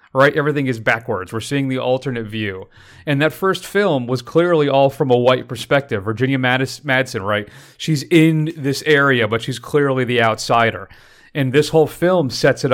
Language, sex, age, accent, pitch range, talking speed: English, male, 30-49, American, 110-135 Hz, 185 wpm